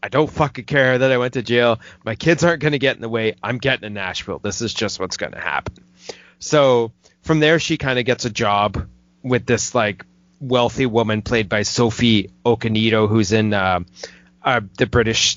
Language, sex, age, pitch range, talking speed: English, male, 30-49, 95-120 Hz, 200 wpm